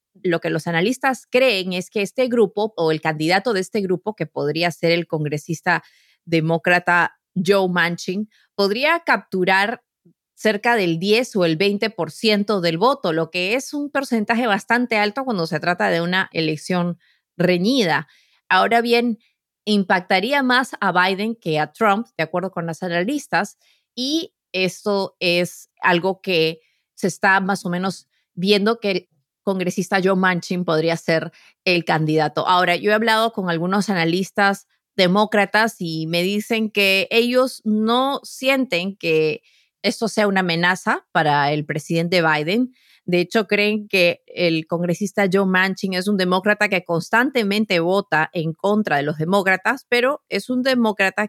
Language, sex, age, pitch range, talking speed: Spanish, female, 30-49, 170-215 Hz, 150 wpm